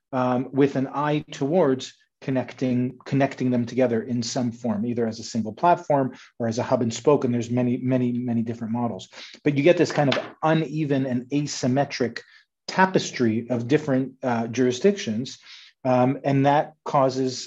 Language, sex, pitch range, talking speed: English, male, 125-150 Hz, 165 wpm